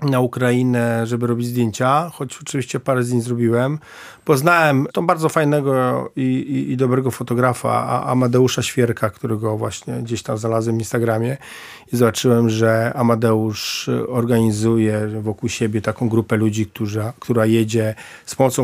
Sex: male